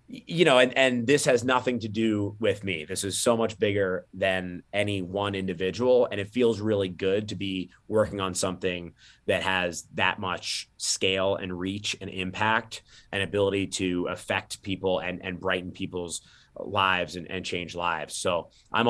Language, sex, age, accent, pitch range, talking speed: English, male, 30-49, American, 95-110 Hz, 175 wpm